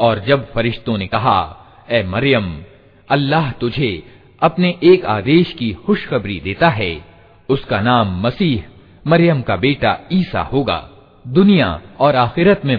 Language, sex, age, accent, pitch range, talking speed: Hindi, male, 50-69, native, 105-150 Hz, 125 wpm